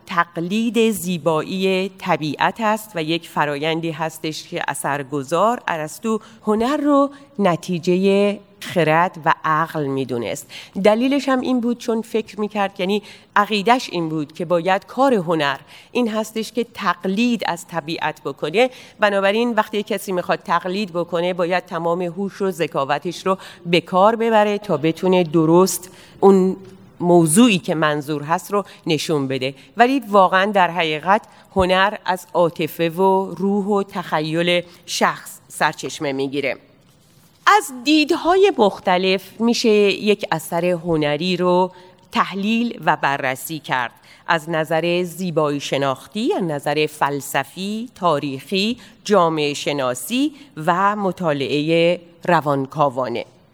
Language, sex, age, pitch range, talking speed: Persian, female, 40-59, 160-210 Hz, 120 wpm